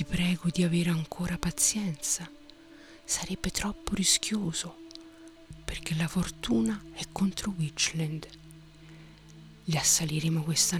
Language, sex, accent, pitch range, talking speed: Italian, female, native, 150-175 Hz, 100 wpm